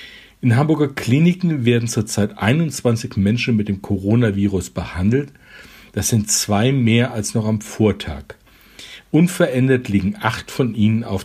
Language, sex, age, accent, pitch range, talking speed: German, male, 50-69, German, 105-130 Hz, 135 wpm